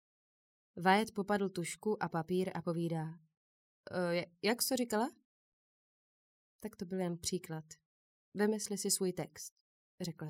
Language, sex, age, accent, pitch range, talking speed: Czech, female, 20-39, native, 160-205 Hz, 120 wpm